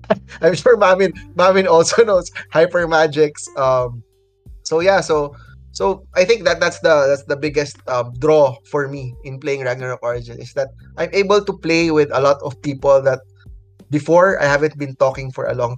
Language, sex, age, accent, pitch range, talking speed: English, male, 20-39, Filipino, 125-160 Hz, 185 wpm